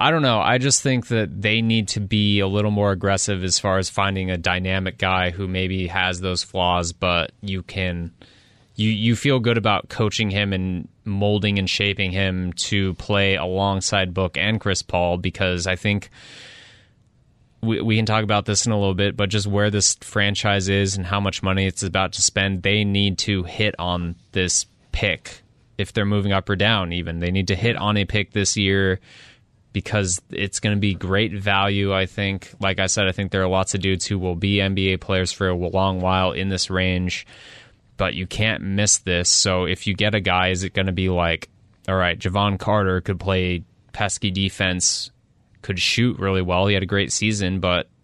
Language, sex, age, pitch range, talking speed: English, male, 20-39, 95-105 Hz, 205 wpm